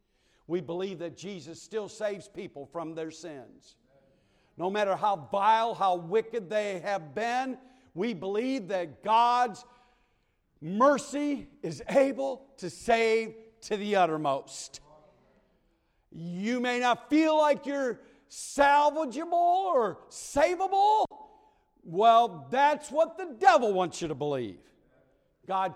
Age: 50-69